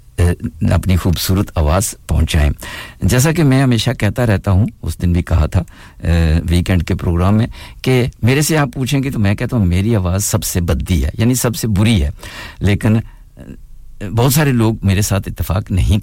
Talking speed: 170 wpm